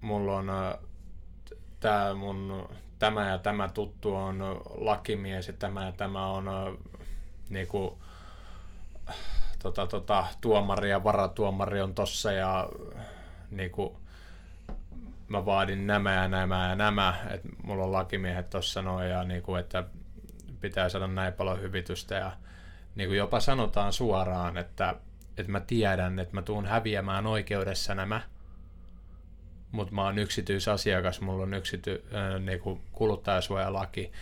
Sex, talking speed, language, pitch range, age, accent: male, 105 wpm, Finnish, 90-100 Hz, 20-39, native